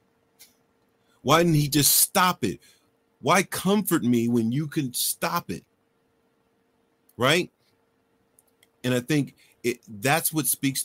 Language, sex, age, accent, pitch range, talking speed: English, male, 40-59, American, 120-155 Hz, 120 wpm